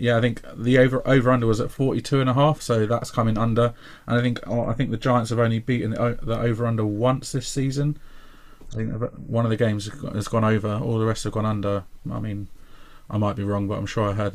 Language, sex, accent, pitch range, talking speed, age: English, male, British, 105-130 Hz, 250 wpm, 30-49